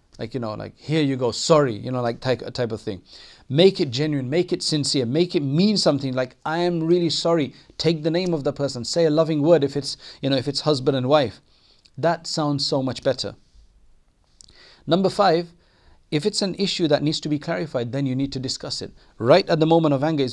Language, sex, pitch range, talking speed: English, male, 130-165 Hz, 230 wpm